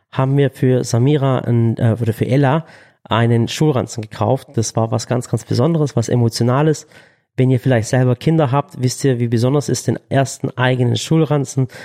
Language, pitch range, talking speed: German, 120-140 Hz, 175 wpm